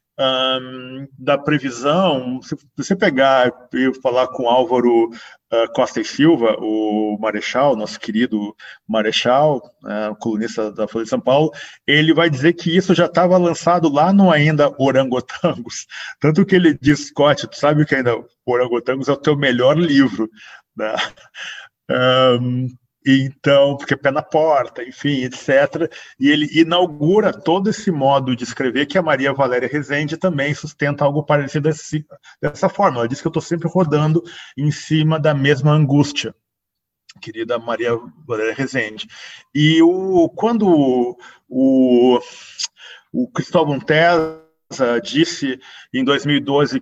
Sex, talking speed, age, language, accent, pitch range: male, 135 wpm, 40-59, Portuguese, Brazilian, 125-160 Hz